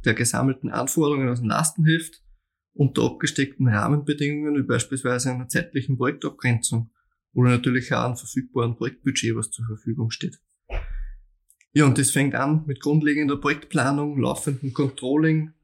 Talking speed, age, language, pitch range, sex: 130 wpm, 20-39, German, 120-140 Hz, male